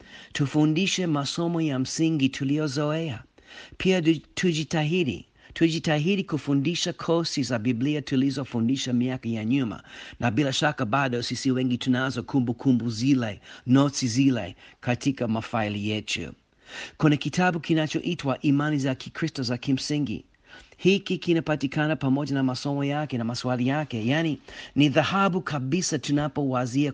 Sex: male